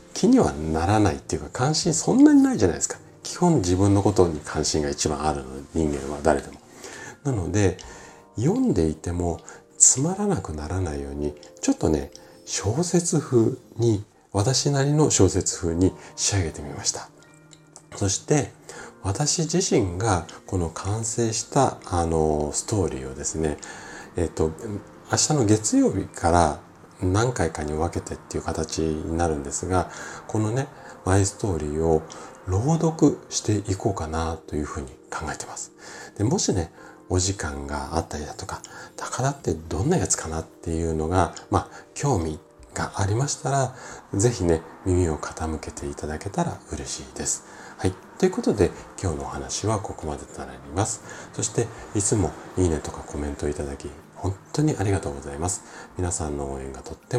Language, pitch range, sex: Japanese, 80-110 Hz, male